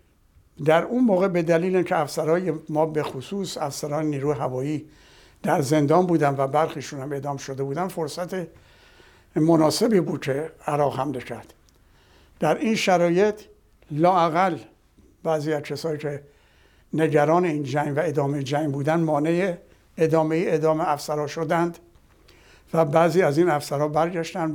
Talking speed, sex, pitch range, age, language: 130 wpm, male, 145-180 Hz, 60-79, Persian